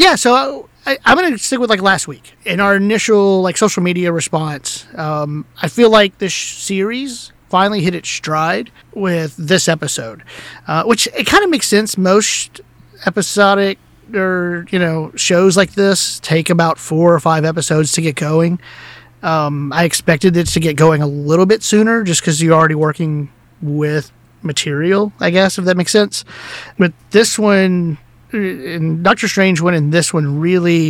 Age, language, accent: 30-49, English, American